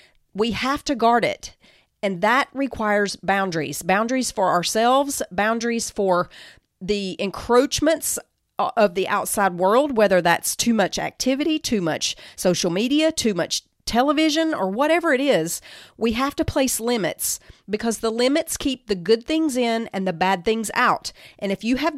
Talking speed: 160 wpm